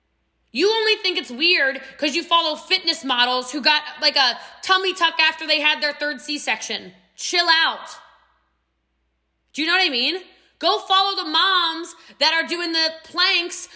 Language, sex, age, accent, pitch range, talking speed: English, female, 20-39, American, 265-360 Hz, 170 wpm